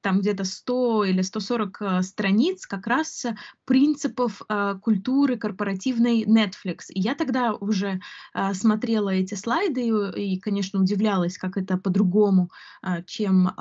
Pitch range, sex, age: 200-250 Hz, female, 20-39